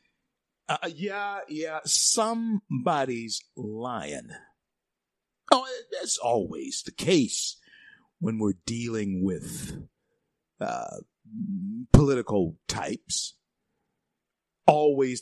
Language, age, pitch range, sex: English, 50-69, 115-175 Hz, male